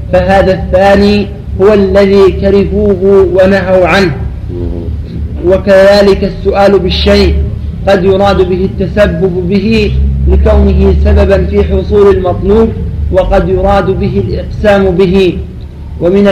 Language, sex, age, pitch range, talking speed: Arabic, male, 30-49, 185-200 Hz, 95 wpm